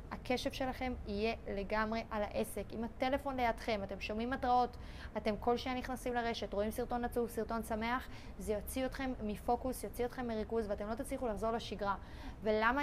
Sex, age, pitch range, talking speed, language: female, 20-39, 215-255 Hz, 165 wpm, Hebrew